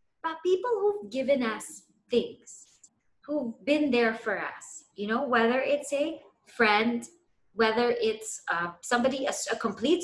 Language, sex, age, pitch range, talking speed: English, female, 20-39, 240-320 Hz, 145 wpm